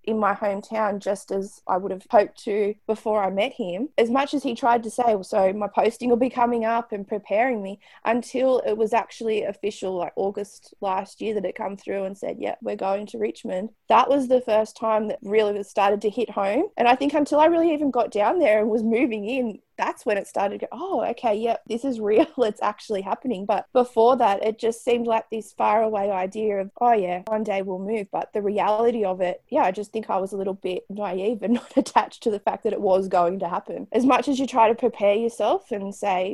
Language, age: English, 20-39